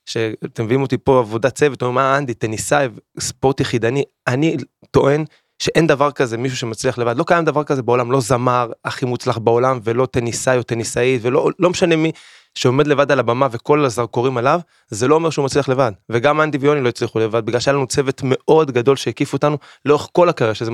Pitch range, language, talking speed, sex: 120-145 Hz, Hebrew, 195 wpm, male